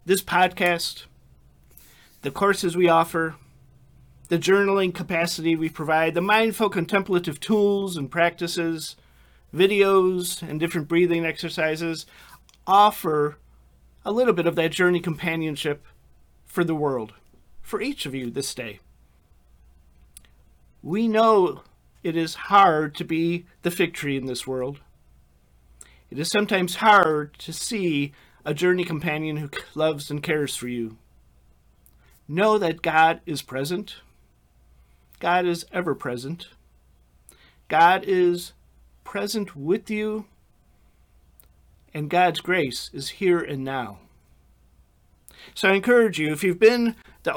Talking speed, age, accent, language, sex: 120 wpm, 40-59, American, English, male